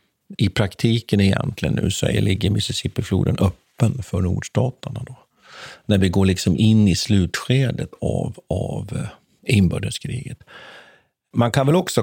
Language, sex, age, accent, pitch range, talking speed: Swedish, male, 50-69, native, 100-135 Hz, 120 wpm